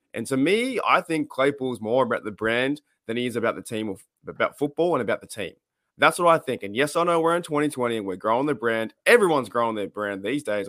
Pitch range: 110-145 Hz